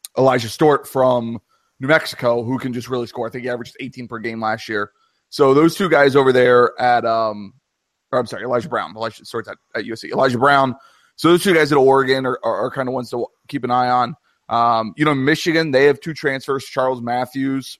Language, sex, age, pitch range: English, male, 30-49, 120-140 Hz